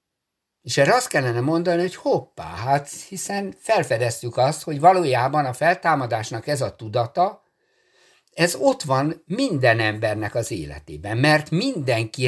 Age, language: 60-79, Hungarian